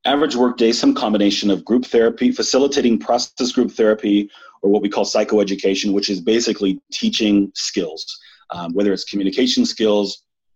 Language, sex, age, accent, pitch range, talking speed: English, male, 30-49, American, 95-125 Hz, 155 wpm